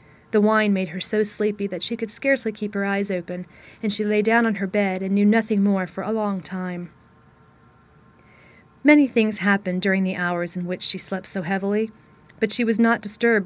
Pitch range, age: 185-225 Hz, 40-59